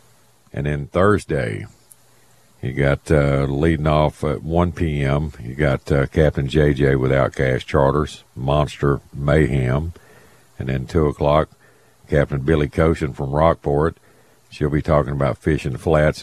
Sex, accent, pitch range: male, American, 70-80 Hz